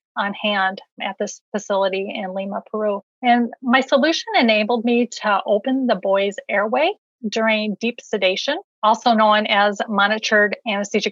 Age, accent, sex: 30-49, American, female